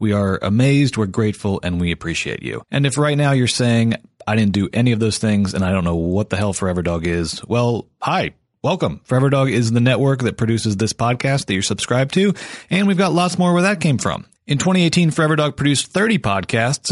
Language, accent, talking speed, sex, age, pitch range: English, American, 225 wpm, male, 30-49, 105-145 Hz